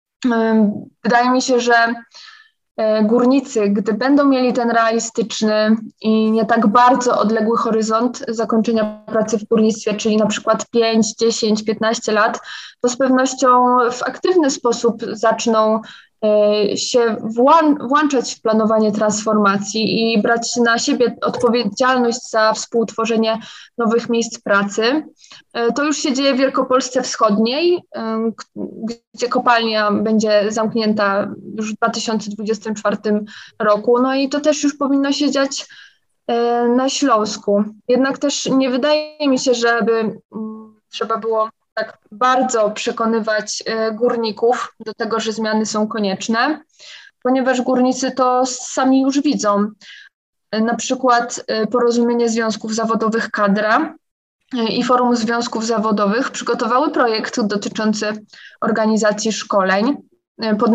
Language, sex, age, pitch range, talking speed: Polish, female, 20-39, 220-255 Hz, 115 wpm